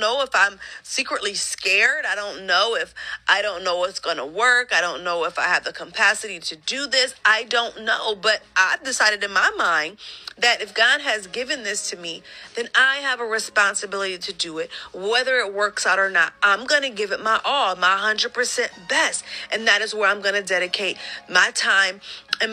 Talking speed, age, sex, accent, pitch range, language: 215 wpm, 40-59, female, American, 200-255 Hz, English